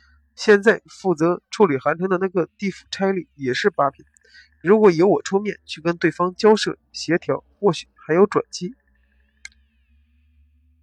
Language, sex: Chinese, male